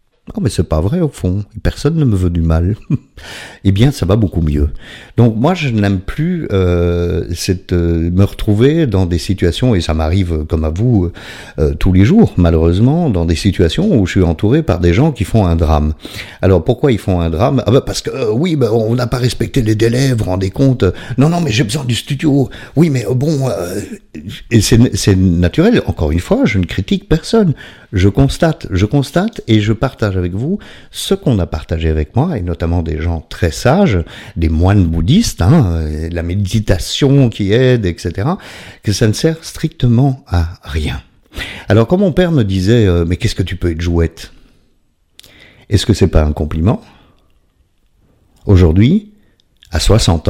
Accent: French